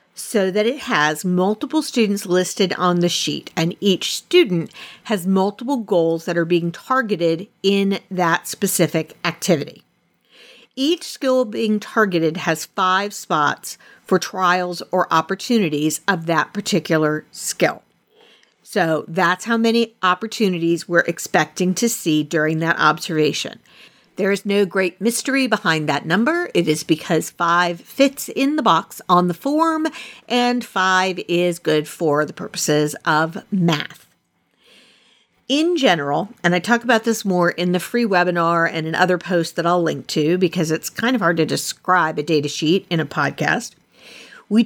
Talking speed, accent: 150 wpm, American